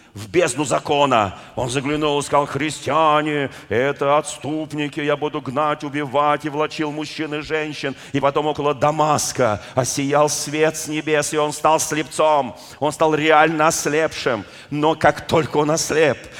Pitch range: 150-185 Hz